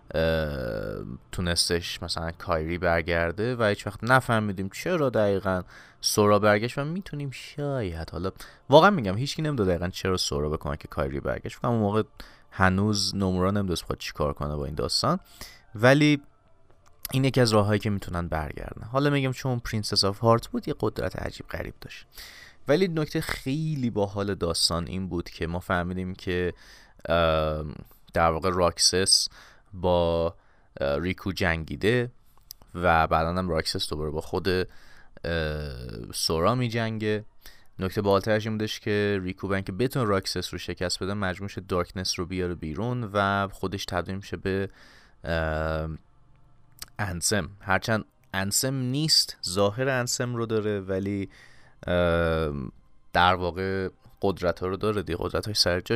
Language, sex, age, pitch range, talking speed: Persian, male, 30-49, 85-110 Hz, 140 wpm